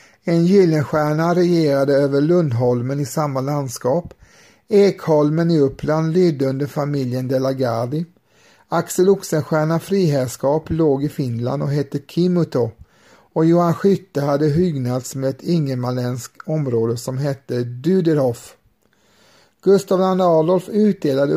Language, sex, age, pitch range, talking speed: Swedish, male, 50-69, 135-175 Hz, 110 wpm